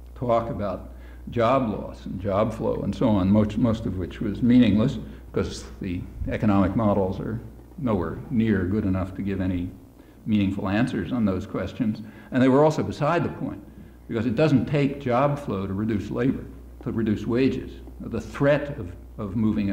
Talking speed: 175 wpm